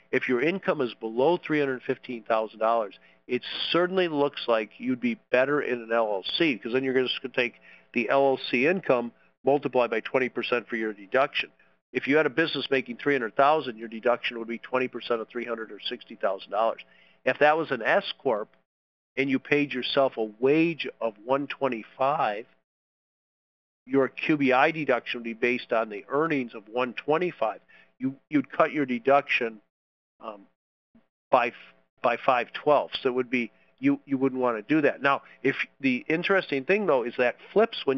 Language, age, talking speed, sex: English, 50-69, 180 wpm, male